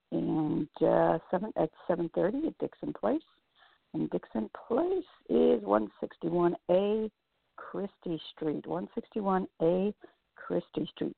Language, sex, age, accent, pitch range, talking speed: English, female, 60-79, American, 160-215 Hz, 90 wpm